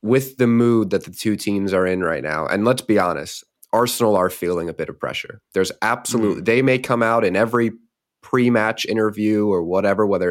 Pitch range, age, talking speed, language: 95-115 Hz, 20-39, 205 wpm, English